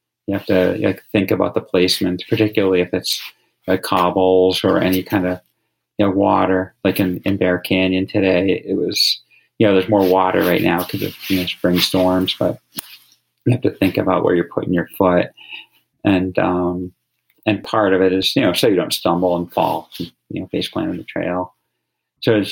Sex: male